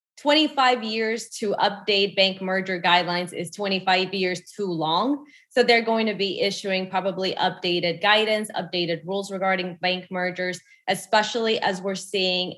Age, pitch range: 20-39, 180-220 Hz